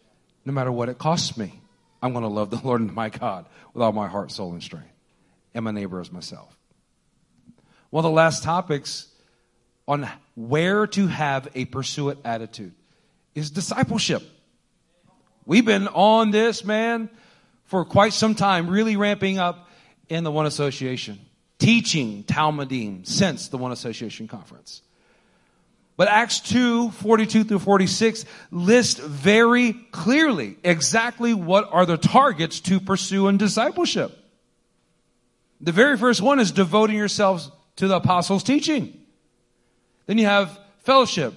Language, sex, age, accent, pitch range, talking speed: English, male, 40-59, American, 140-215 Hz, 140 wpm